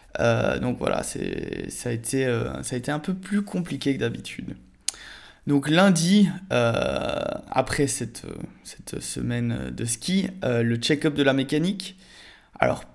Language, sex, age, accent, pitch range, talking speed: French, male, 20-39, French, 125-150 Hz, 155 wpm